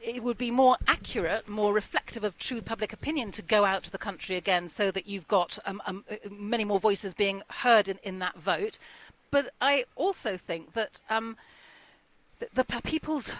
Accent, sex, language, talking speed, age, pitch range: British, female, English, 185 wpm, 40-59, 195-235 Hz